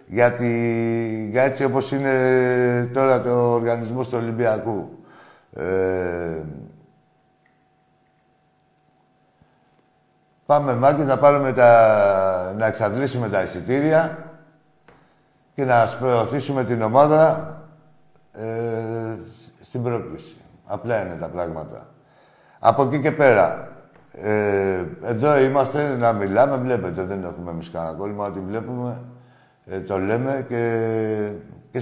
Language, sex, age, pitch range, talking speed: Greek, male, 60-79, 110-145 Hz, 100 wpm